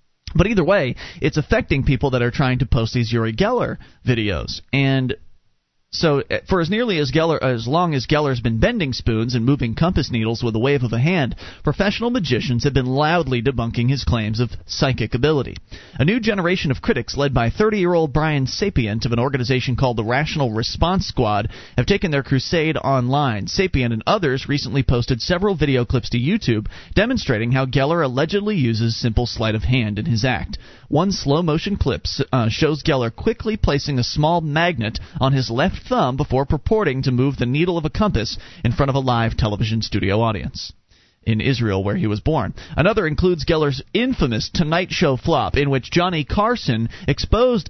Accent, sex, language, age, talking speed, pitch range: American, male, English, 30-49, 180 wpm, 115-150 Hz